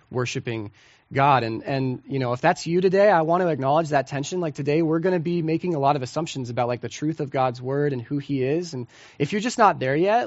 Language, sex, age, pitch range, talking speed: English, male, 20-39, 135-175 Hz, 265 wpm